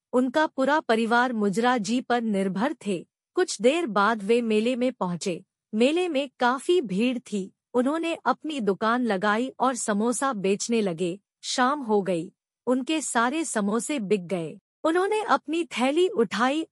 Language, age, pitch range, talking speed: Hindi, 50-69, 210-270 Hz, 140 wpm